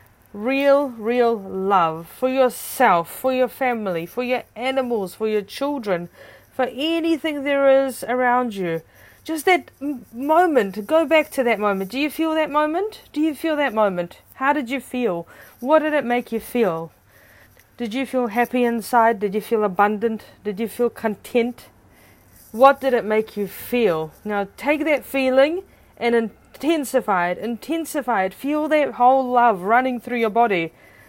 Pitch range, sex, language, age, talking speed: 215-285 Hz, female, English, 30-49, 165 wpm